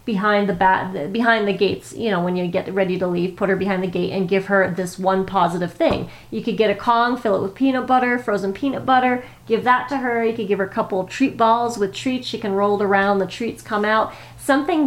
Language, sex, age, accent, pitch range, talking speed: English, female, 30-49, American, 195-230 Hz, 255 wpm